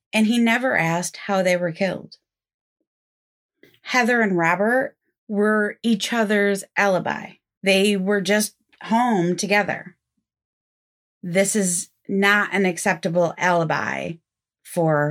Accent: American